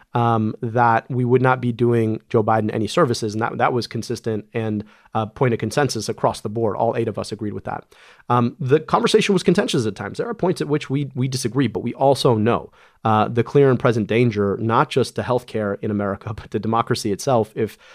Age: 30-49